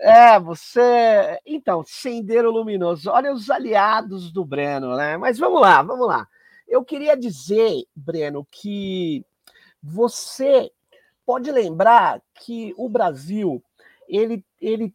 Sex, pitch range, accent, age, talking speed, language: male, 195-260 Hz, Brazilian, 50-69, 115 wpm, Portuguese